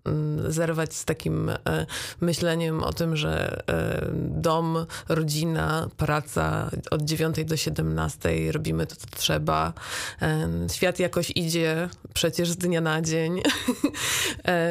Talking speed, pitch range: 120 wpm, 160-185 Hz